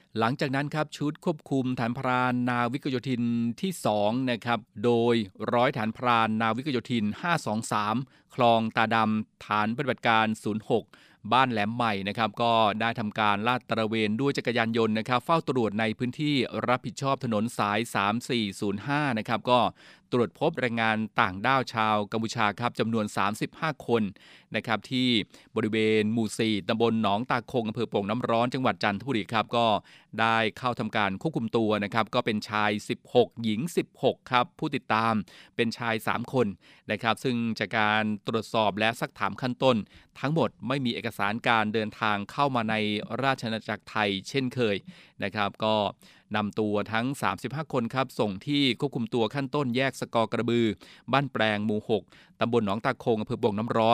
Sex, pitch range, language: male, 110-125 Hz, Thai